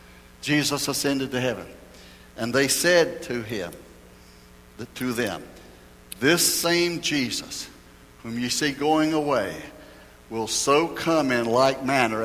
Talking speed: 120 wpm